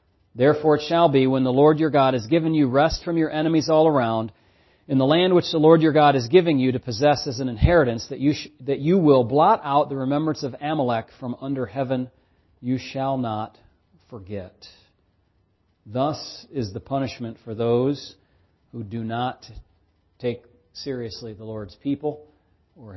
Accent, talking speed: American, 180 wpm